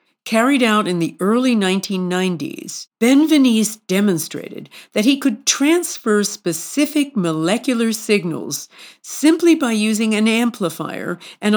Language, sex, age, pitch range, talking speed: English, female, 50-69, 175-235 Hz, 110 wpm